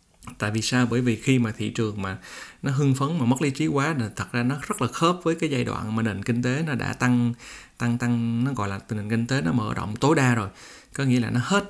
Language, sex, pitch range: Vietnamese, male, 110-130 Hz